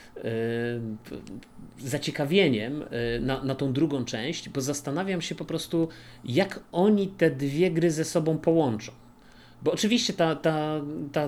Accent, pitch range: native, 120-150 Hz